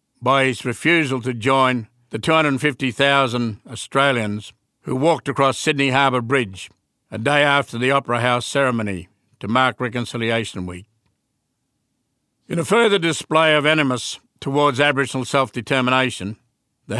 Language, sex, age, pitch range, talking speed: English, male, 60-79, 120-145 Hz, 125 wpm